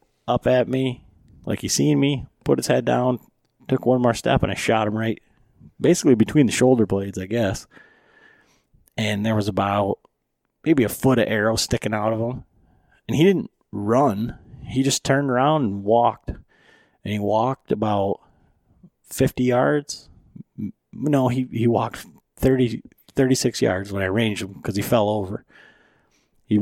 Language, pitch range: English, 105-125 Hz